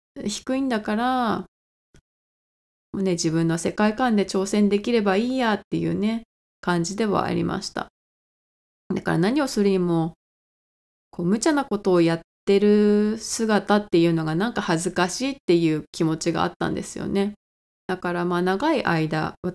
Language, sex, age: Japanese, female, 20-39